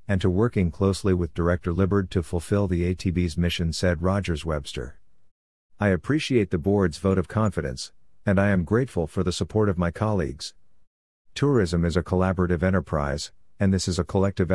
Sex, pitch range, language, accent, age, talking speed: male, 85-100 Hz, English, American, 50-69, 175 wpm